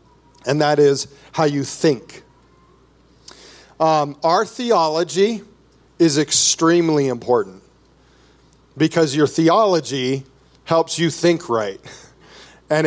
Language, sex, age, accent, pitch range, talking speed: English, male, 40-59, American, 140-175 Hz, 95 wpm